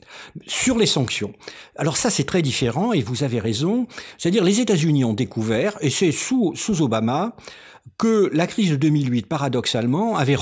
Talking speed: 165 wpm